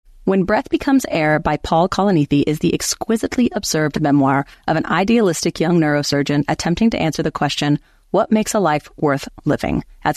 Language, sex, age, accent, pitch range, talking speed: English, female, 30-49, American, 155-185 Hz, 170 wpm